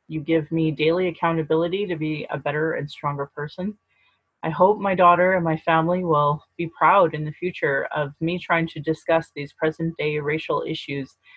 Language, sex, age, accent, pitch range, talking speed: English, female, 30-49, American, 160-195 Hz, 180 wpm